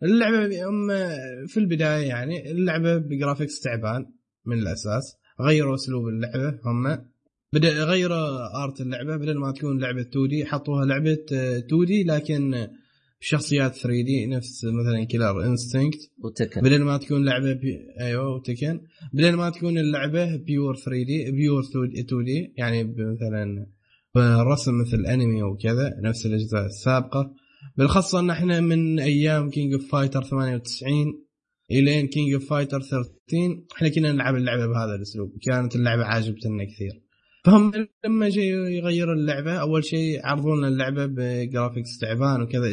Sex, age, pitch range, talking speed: male, 20-39, 125-155 Hz, 130 wpm